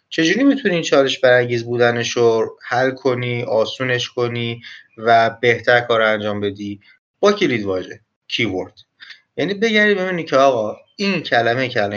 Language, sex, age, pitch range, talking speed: Persian, male, 30-49, 115-150 Hz, 140 wpm